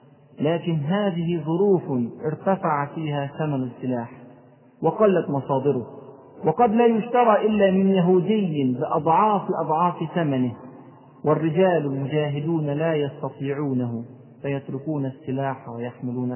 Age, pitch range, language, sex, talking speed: 40-59, 130-180 Hz, Arabic, male, 90 wpm